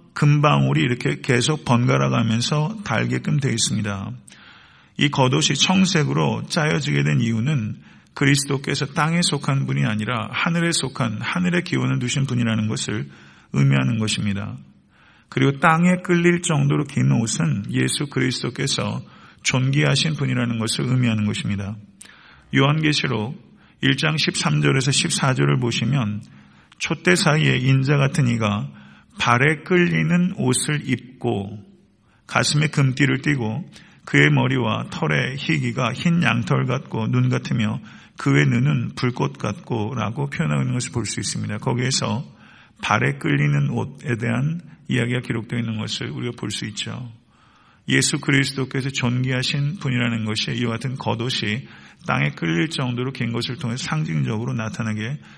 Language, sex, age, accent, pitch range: Korean, male, 40-59, native, 110-150 Hz